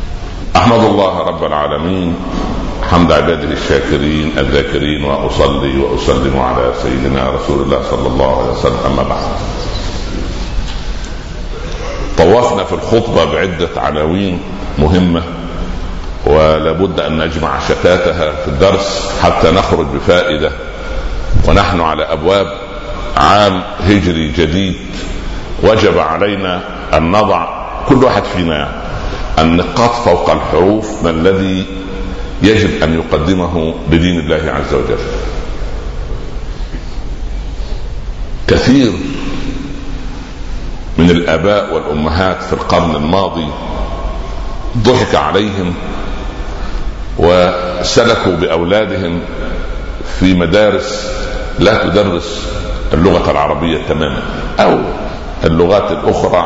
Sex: male